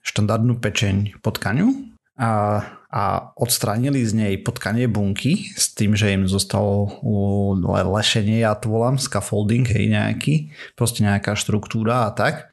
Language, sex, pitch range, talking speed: Slovak, male, 100-120 Hz, 140 wpm